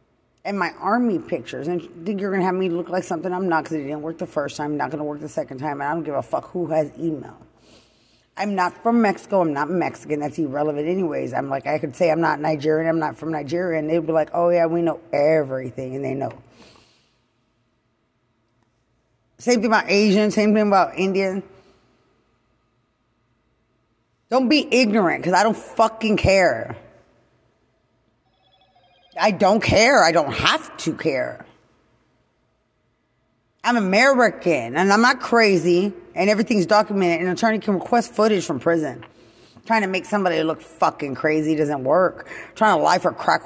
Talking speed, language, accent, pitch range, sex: 180 wpm, English, American, 135-205 Hz, female